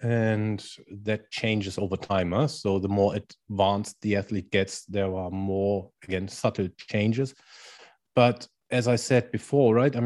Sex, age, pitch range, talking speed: male, 30-49, 100-120 Hz, 150 wpm